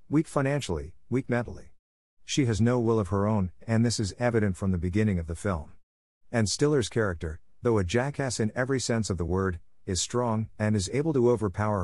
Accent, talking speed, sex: American, 205 wpm, male